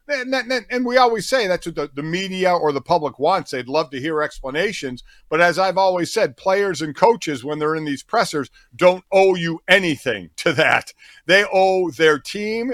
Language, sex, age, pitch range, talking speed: English, male, 50-69, 140-185 Hz, 195 wpm